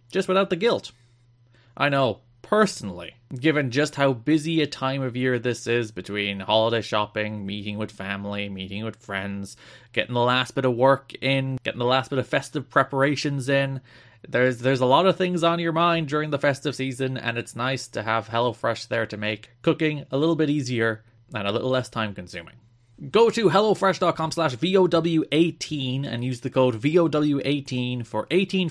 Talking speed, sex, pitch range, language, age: 180 wpm, male, 115-155 Hz, English, 20-39